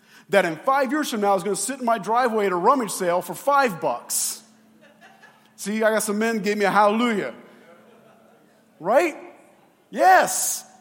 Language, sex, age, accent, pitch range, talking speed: English, male, 40-59, American, 205-265 Hz, 180 wpm